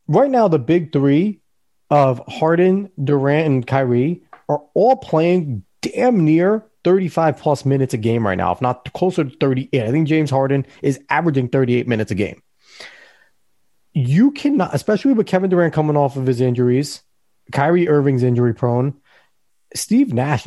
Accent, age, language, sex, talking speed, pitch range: American, 30-49, English, male, 155 wpm, 125-175 Hz